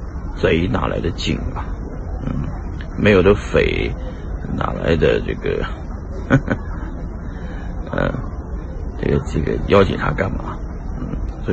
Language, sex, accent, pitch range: Chinese, male, native, 75-95 Hz